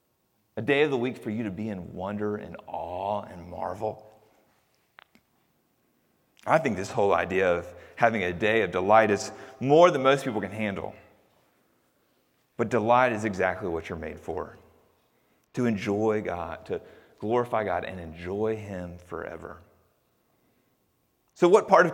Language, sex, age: English, male, 30-49